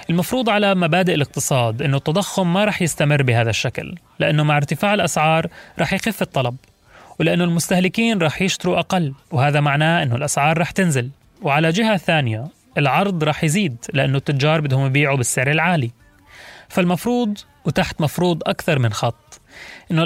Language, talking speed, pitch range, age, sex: Arabic, 145 wpm, 130-175 Hz, 30-49, male